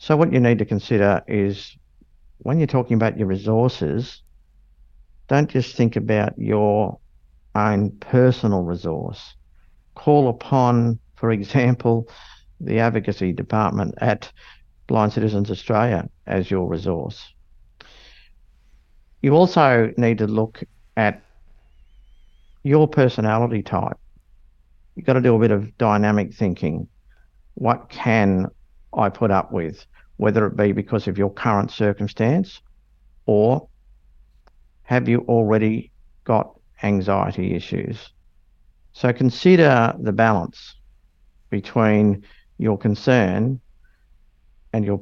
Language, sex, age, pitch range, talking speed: English, male, 50-69, 95-115 Hz, 110 wpm